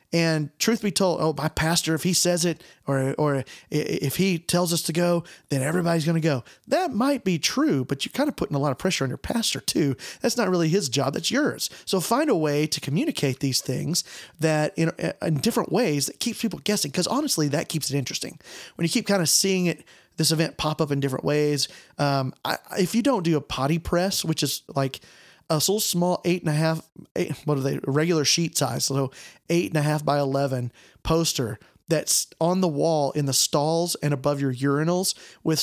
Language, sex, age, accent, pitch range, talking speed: English, male, 30-49, American, 145-180 Hz, 220 wpm